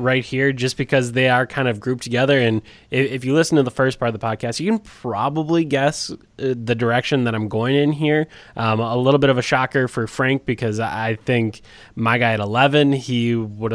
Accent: American